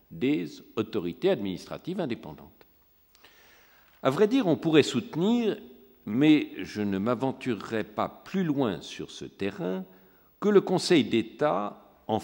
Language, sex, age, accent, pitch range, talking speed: French, male, 60-79, French, 125-210 Hz, 125 wpm